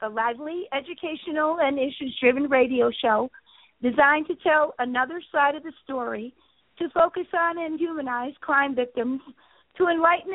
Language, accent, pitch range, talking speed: English, American, 260-320 Hz, 140 wpm